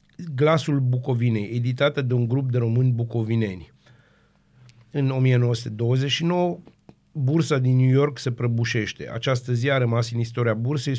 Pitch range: 115-135 Hz